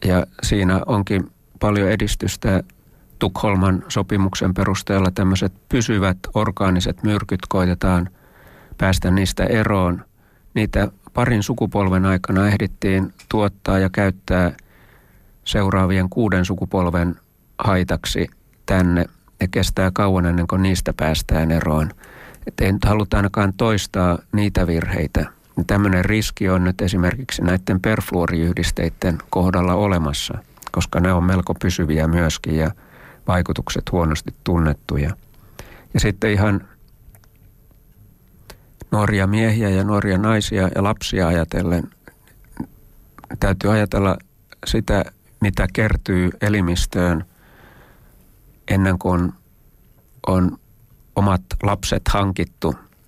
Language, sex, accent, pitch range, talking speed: Finnish, male, native, 90-100 Hz, 100 wpm